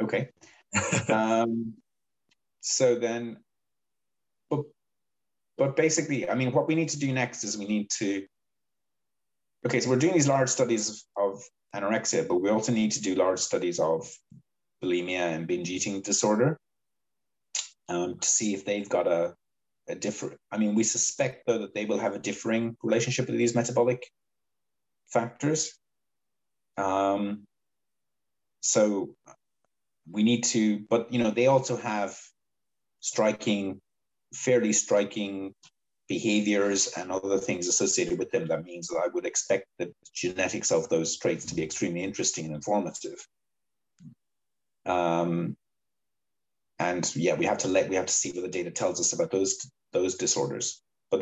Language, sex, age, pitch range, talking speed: English, male, 30-49, 95-120 Hz, 150 wpm